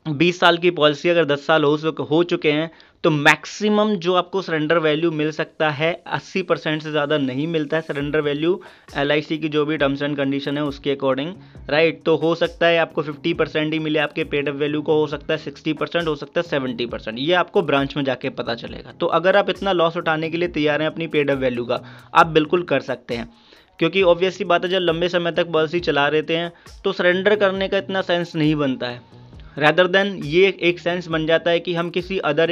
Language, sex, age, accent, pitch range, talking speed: Hindi, male, 20-39, native, 145-175 Hz, 225 wpm